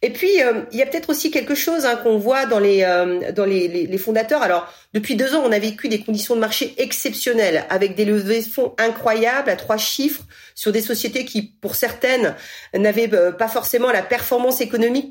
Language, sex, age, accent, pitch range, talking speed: French, female, 40-59, French, 215-270 Hz, 215 wpm